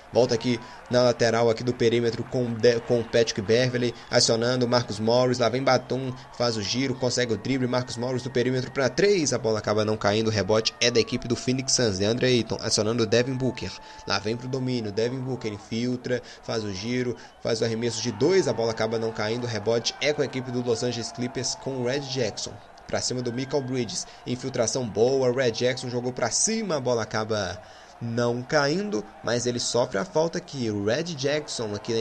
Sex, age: male, 20-39